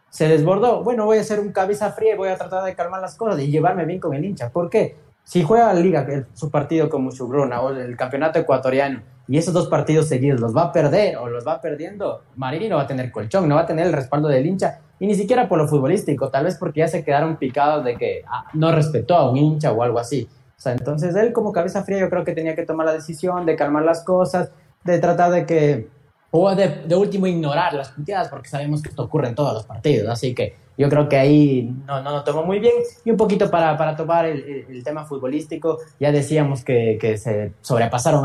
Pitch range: 135-175 Hz